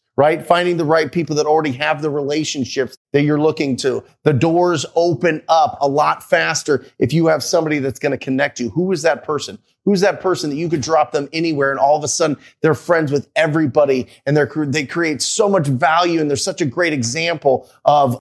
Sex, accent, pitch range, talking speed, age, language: male, American, 140-165 Hz, 215 wpm, 30-49, English